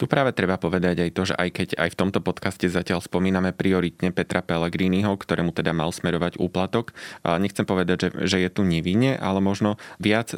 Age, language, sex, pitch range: 20-39, Slovak, male, 85-95 Hz